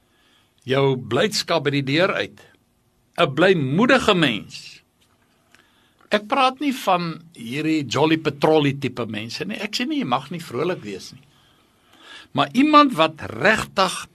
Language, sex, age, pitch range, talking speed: English, male, 60-79, 130-180 Hz, 130 wpm